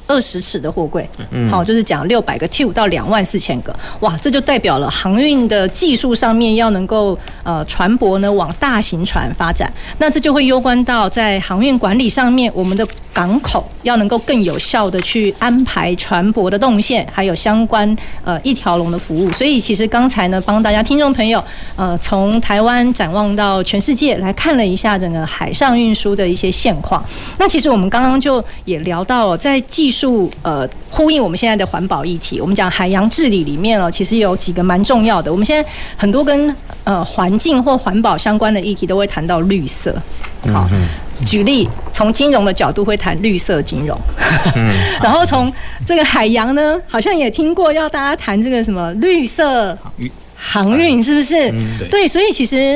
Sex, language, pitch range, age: female, Chinese, 190-255 Hz, 30-49